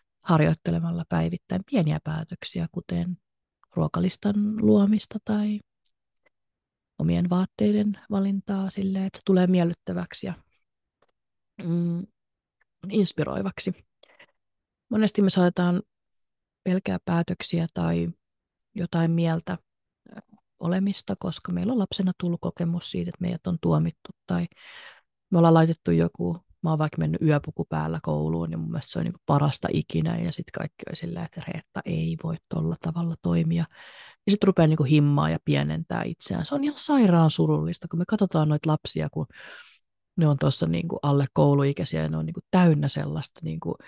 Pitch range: 140-180 Hz